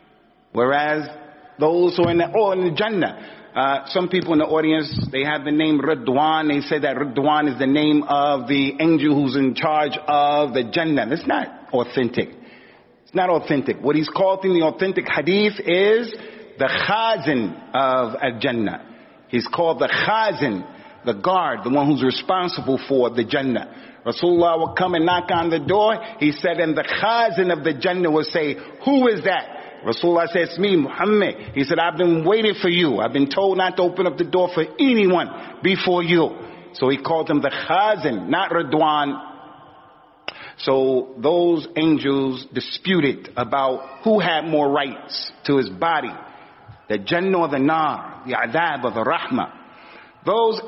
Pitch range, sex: 140-185 Hz, male